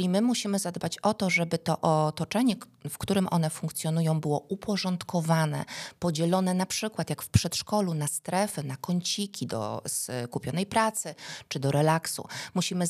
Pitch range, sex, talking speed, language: 150-190 Hz, female, 150 wpm, Polish